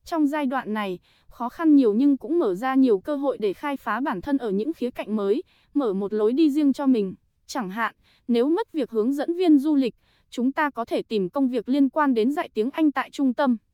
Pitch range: 230-300 Hz